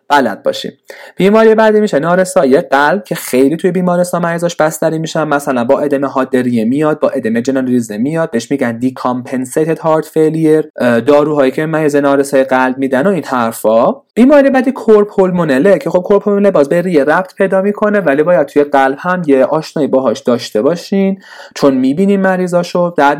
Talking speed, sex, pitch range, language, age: 170 wpm, male, 135-180 Hz, Persian, 30-49